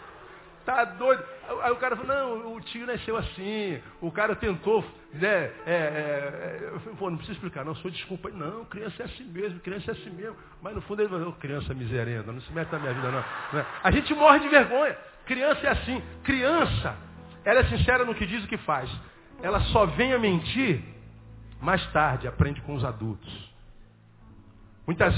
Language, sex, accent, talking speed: Portuguese, male, Brazilian, 195 wpm